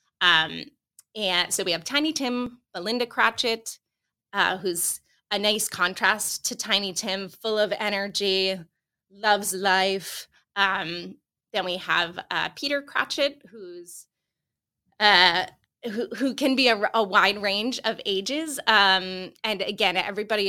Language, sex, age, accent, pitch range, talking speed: English, female, 20-39, American, 180-215 Hz, 130 wpm